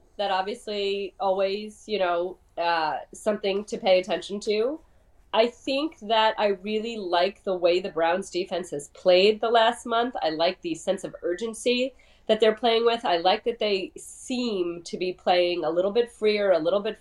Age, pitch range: 30-49, 185-255 Hz